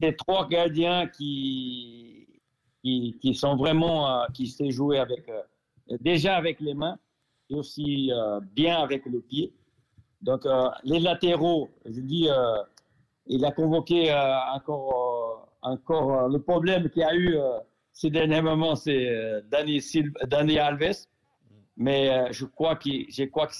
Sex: male